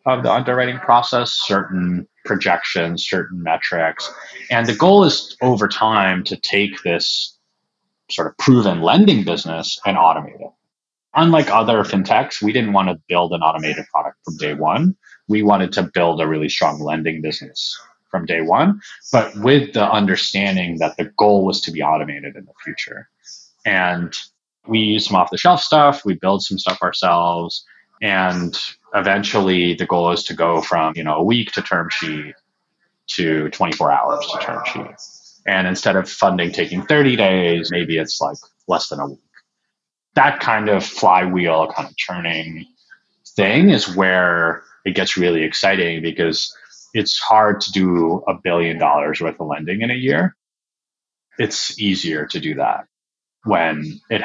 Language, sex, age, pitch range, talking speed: English, male, 30-49, 85-110 Hz, 160 wpm